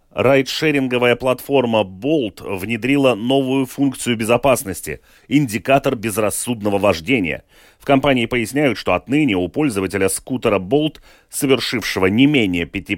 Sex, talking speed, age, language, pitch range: male, 100 wpm, 30-49, Russian, 110-150 Hz